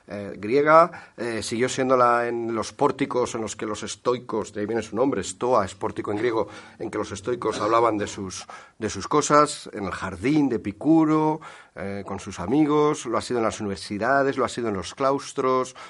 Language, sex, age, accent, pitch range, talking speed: Spanish, male, 40-59, Spanish, 95-125 Hz, 210 wpm